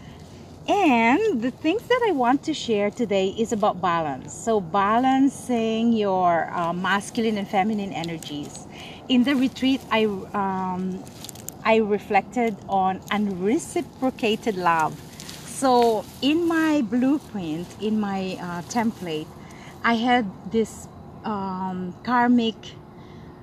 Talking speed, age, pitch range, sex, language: 110 wpm, 40-59, 190-245 Hz, female, English